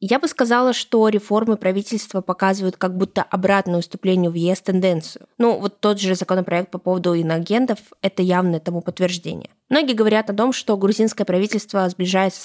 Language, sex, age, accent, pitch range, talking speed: Russian, female, 20-39, native, 180-215 Hz, 170 wpm